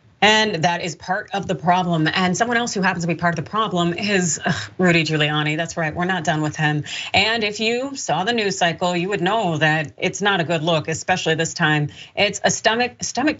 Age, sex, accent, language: 30-49, female, American, English